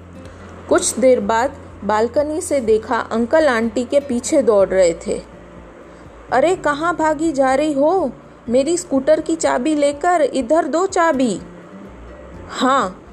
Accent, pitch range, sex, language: native, 225-290 Hz, female, Hindi